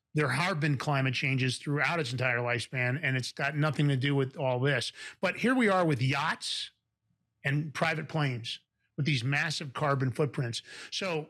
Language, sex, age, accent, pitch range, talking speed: English, male, 40-59, American, 140-180 Hz, 175 wpm